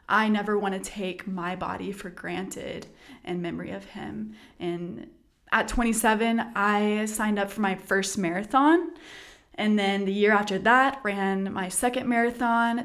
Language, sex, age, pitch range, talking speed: English, female, 20-39, 195-230 Hz, 155 wpm